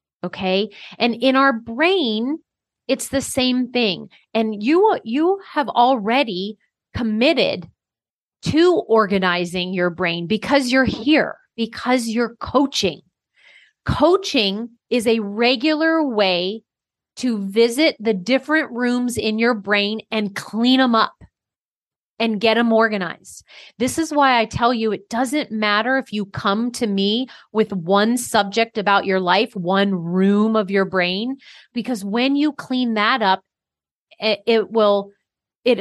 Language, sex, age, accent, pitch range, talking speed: English, female, 30-49, American, 205-265 Hz, 135 wpm